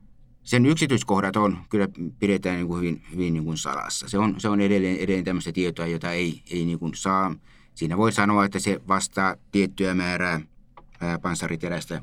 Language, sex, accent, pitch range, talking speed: Finnish, male, native, 85-105 Hz, 175 wpm